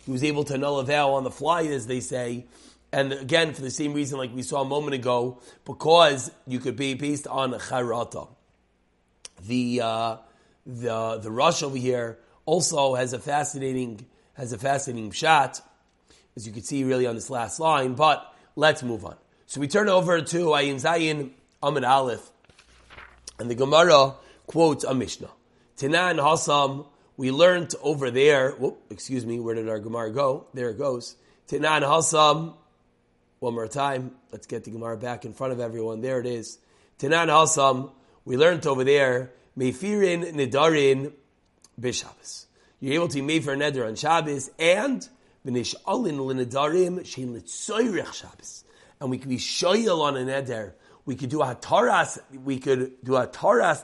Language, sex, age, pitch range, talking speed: English, male, 30-49, 125-150 Hz, 165 wpm